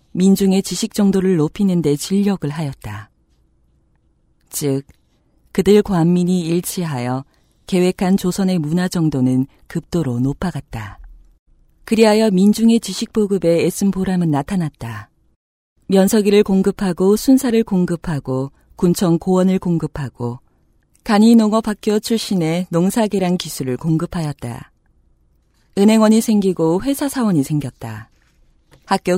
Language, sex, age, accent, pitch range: Korean, female, 40-59, native, 140-195 Hz